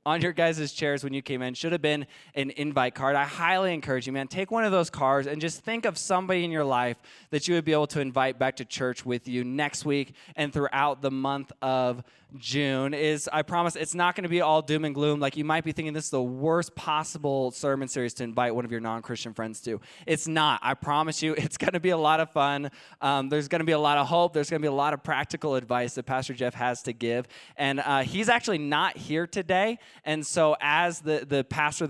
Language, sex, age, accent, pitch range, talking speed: English, male, 20-39, American, 130-170 Hz, 250 wpm